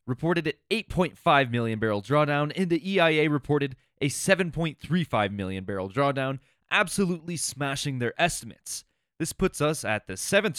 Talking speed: 140 wpm